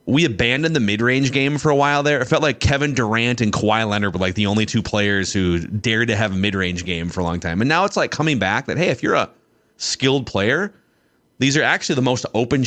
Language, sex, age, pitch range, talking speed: English, male, 30-49, 110-150 Hz, 250 wpm